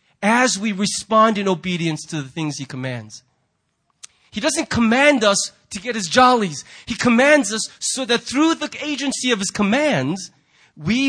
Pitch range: 130-210 Hz